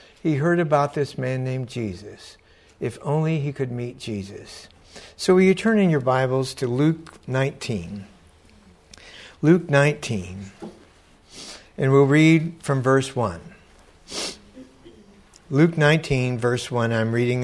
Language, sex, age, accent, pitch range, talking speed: English, male, 60-79, American, 105-145 Hz, 125 wpm